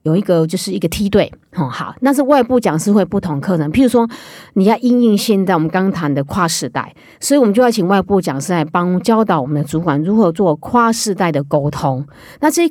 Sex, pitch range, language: female, 165-210 Hz, Chinese